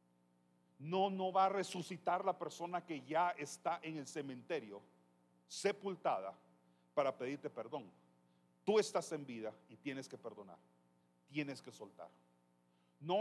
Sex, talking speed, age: male, 130 wpm, 40-59